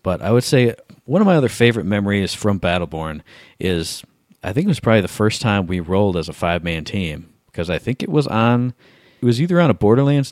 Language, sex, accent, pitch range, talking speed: English, male, American, 90-120 Hz, 235 wpm